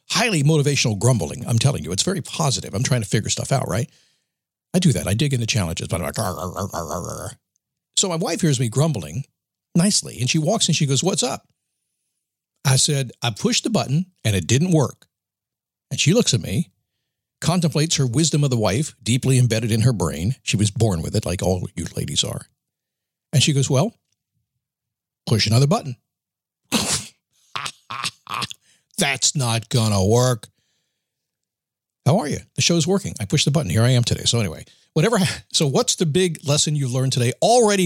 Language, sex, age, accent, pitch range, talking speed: English, male, 60-79, American, 115-160 Hz, 190 wpm